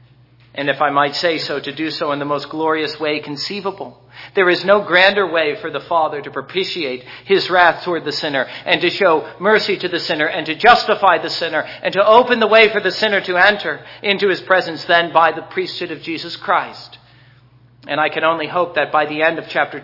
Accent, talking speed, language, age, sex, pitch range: American, 220 wpm, English, 50-69, male, 140-180 Hz